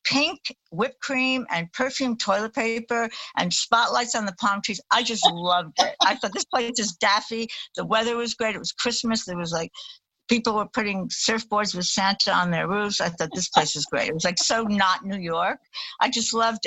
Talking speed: 210 wpm